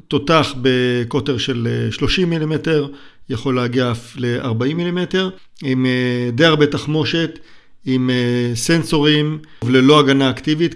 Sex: male